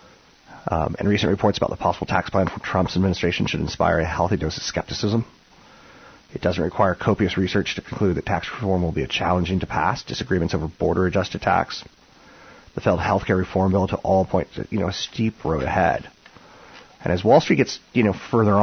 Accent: American